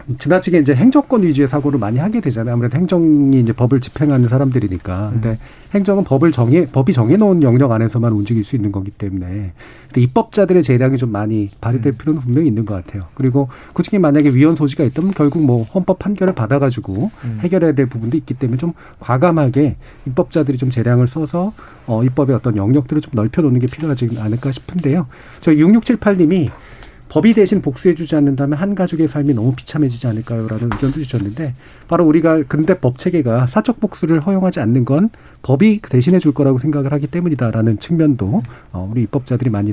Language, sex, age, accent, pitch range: Korean, male, 40-59, native, 115-160 Hz